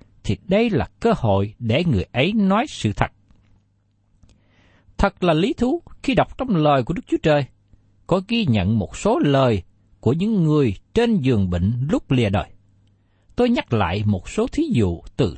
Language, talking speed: Vietnamese, 180 wpm